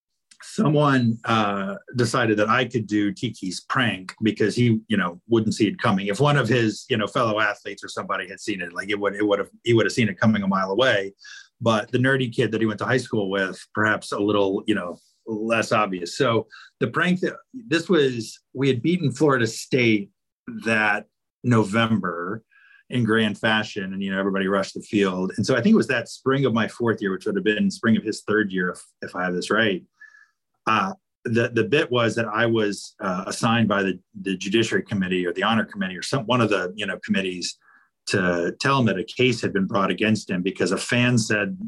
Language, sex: English, male